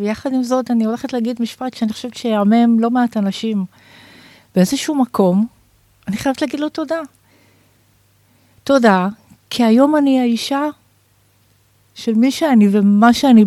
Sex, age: female, 50-69